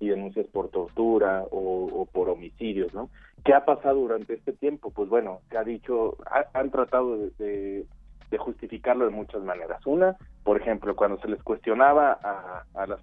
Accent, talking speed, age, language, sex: Mexican, 185 wpm, 40-59, Spanish, male